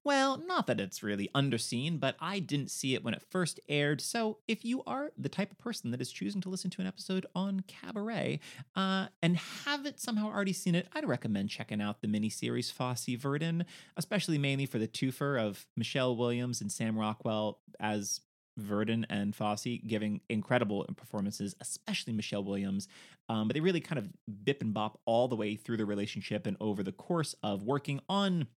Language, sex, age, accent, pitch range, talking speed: English, male, 30-49, American, 110-180 Hz, 190 wpm